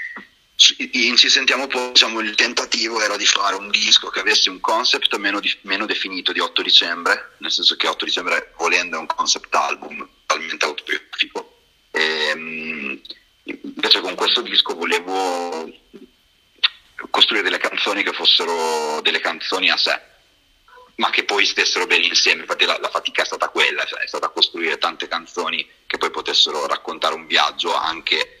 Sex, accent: male, native